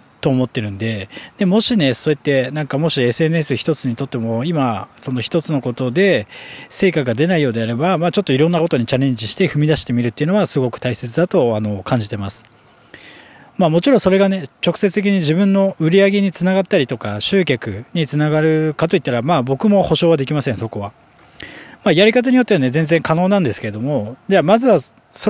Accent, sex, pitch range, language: native, male, 125-180 Hz, Japanese